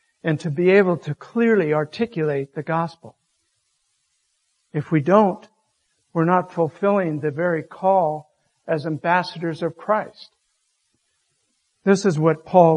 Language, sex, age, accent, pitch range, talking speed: English, male, 60-79, American, 145-180 Hz, 120 wpm